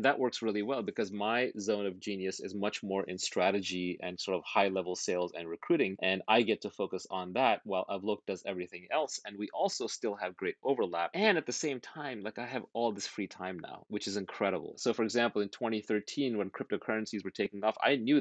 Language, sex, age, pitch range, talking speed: English, male, 30-49, 90-115 Hz, 225 wpm